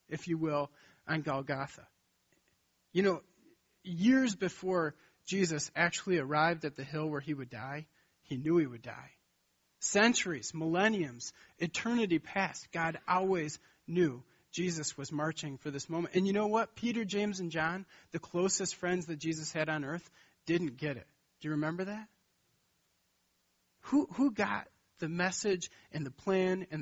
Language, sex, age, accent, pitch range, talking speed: English, male, 40-59, American, 145-180 Hz, 155 wpm